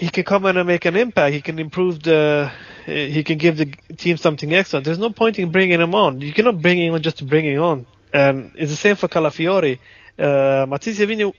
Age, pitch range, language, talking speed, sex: 20-39, 130-165 Hz, English, 235 wpm, male